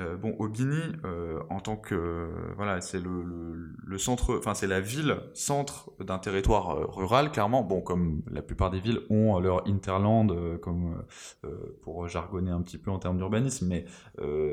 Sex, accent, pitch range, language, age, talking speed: male, French, 90-115 Hz, French, 20-39, 180 wpm